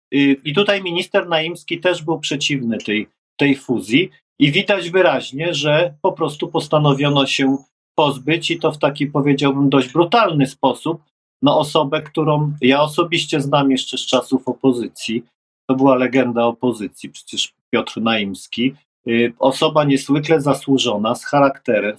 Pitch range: 125-155 Hz